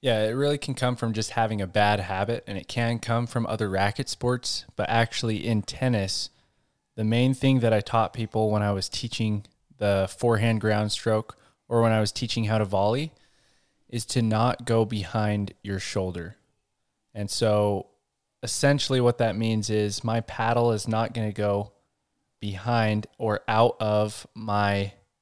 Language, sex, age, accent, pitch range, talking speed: English, male, 20-39, American, 105-120 Hz, 170 wpm